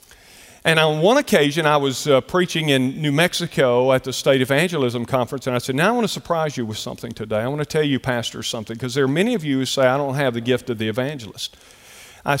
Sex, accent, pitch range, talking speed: male, American, 115-155 Hz, 250 wpm